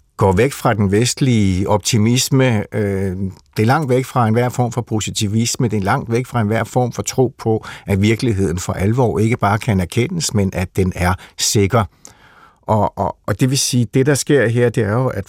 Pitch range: 100-125 Hz